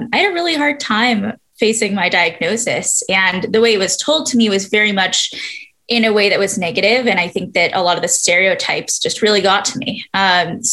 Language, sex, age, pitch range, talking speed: English, female, 10-29, 185-235 Hz, 230 wpm